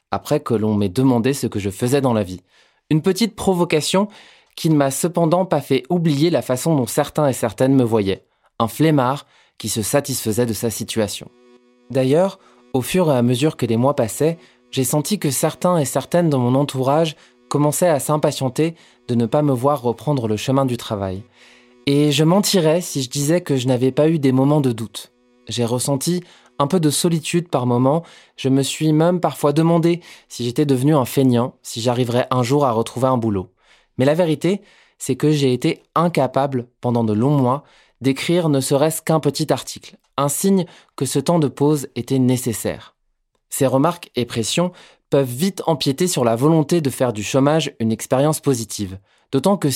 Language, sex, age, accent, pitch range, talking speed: French, male, 20-39, French, 120-155 Hz, 190 wpm